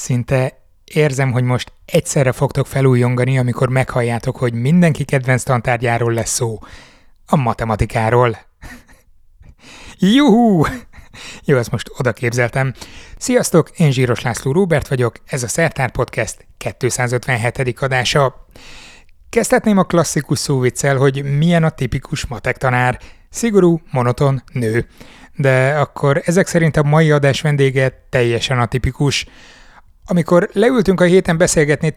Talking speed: 115 wpm